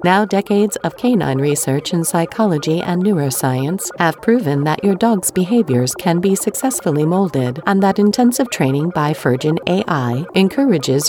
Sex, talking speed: female, 145 wpm